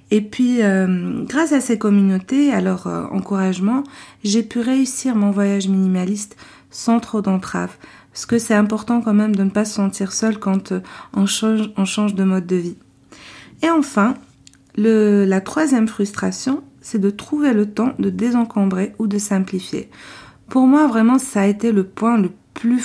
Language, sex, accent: French, female, French